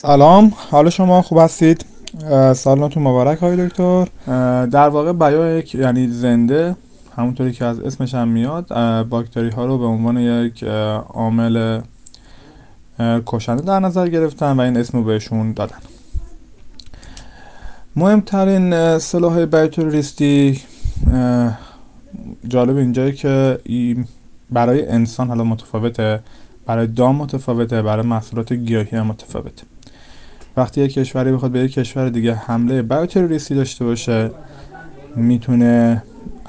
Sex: male